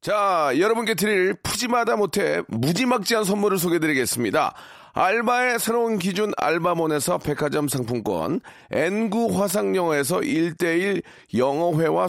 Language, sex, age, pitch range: Korean, male, 40-59, 160-215 Hz